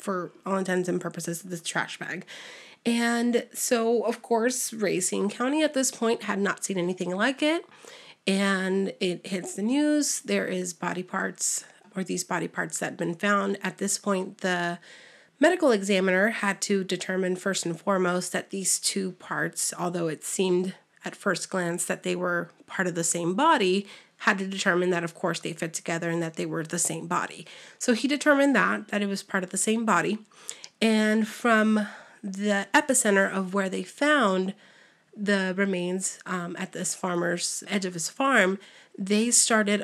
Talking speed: 180 wpm